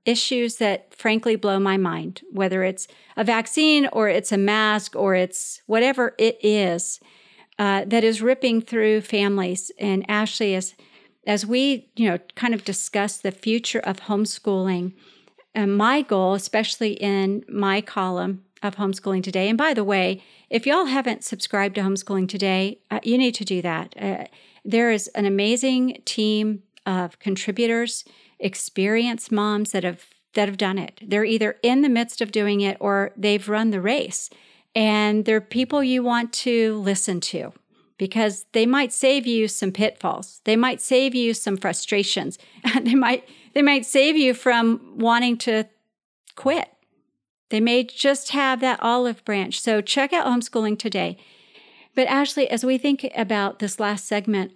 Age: 50-69